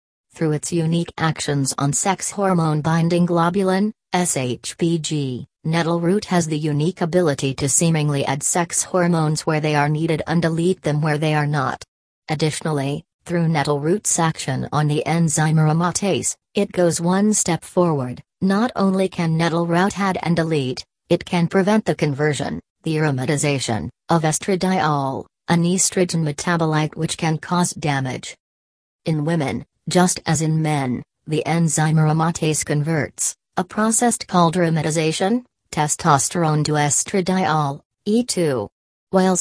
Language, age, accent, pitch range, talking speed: English, 40-59, American, 145-175 Hz, 135 wpm